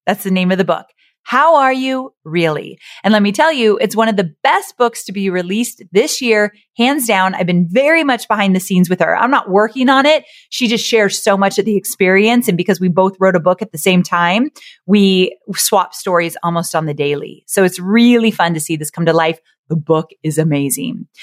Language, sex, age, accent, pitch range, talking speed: English, female, 30-49, American, 170-225 Hz, 230 wpm